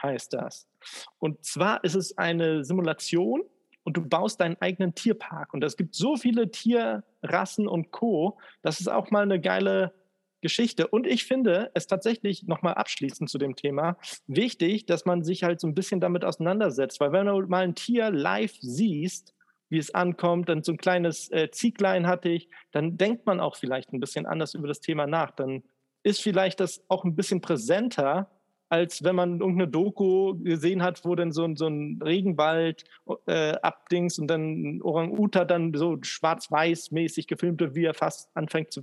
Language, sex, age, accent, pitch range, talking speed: German, male, 40-59, German, 160-190 Hz, 180 wpm